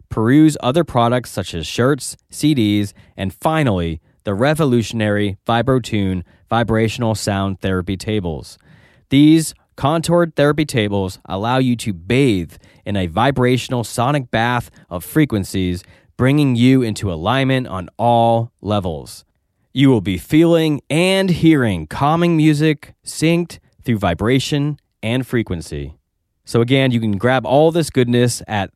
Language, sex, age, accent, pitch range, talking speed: English, male, 30-49, American, 100-130 Hz, 125 wpm